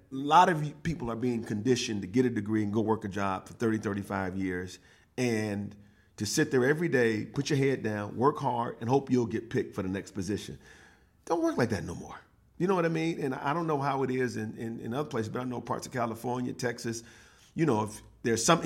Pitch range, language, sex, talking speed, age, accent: 115-155 Hz, English, male, 245 wpm, 40-59, American